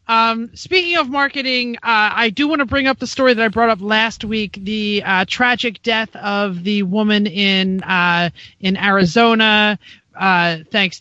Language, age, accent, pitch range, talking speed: English, 30-49, American, 185-230 Hz, 175 wpm